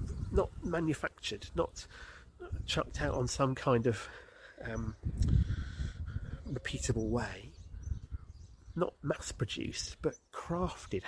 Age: 40-59